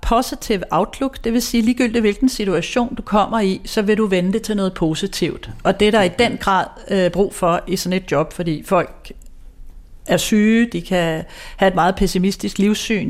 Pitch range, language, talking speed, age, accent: 175-220 Hz, Danish, 205 wpm, 40-59, native